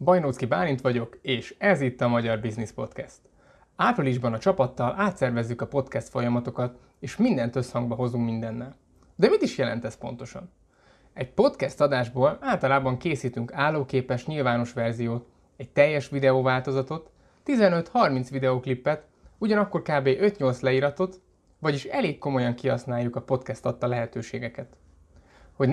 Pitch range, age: 120-145 Hz, 20-39